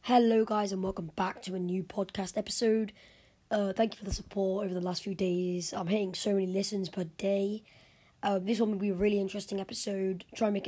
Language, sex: English, female